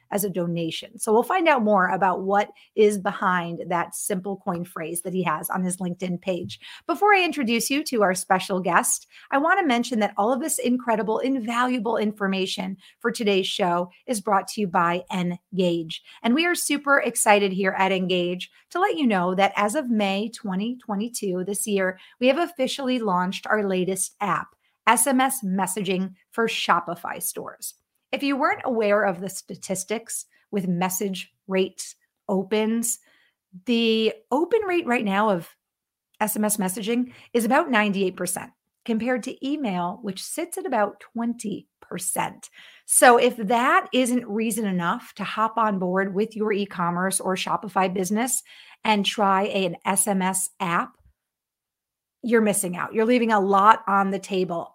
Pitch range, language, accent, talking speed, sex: 190-240 Hz, English, American, 155 wpm, female